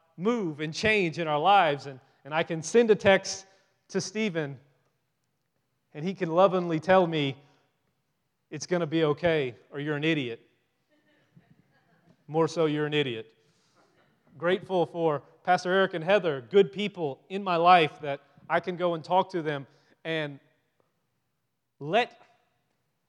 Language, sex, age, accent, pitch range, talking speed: English, male, 30-49, American, 155-200 Hz, 145 wpm